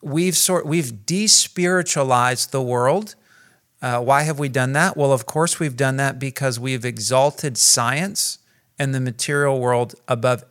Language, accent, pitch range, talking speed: English, American, 120-150 Hz, 155 wpm